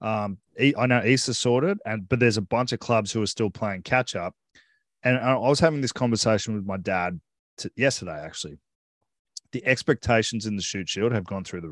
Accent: Australian